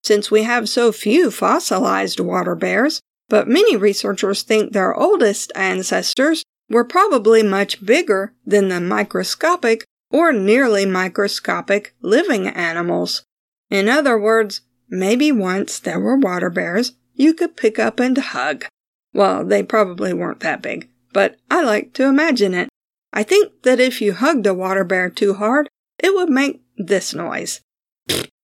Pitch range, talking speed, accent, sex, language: 200-275 Hz, 150 wpm, American, female, English